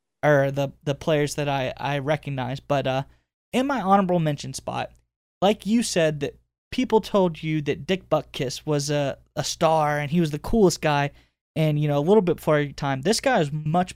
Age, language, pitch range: 20-39, English, 140-195 Hz